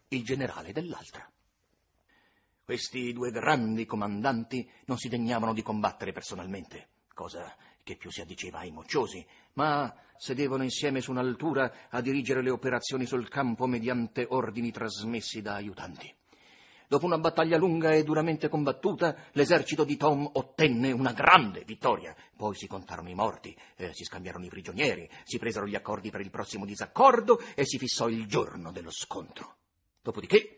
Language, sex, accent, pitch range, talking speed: Italian, male, native, 110-155 Hz, 150 wpm